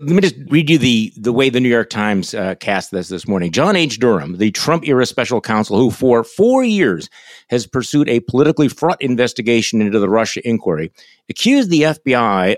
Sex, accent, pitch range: male, American, 110-155 Hz